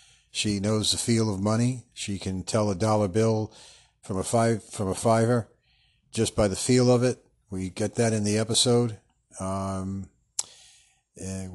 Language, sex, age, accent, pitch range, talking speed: English, male, 50-69, American, 100-120 Hz, 165 wpm